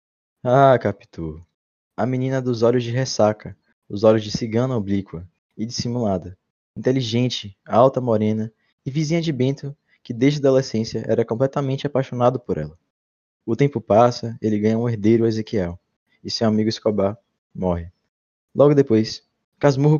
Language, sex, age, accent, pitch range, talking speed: Portuguese, male, 20-39, Brazilian, 110-135 Hz, 140 wpm